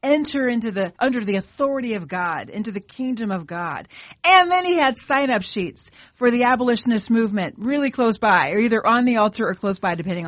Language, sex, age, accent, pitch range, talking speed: English, female, 40-59, American, 195-265 Hz, 205 wpm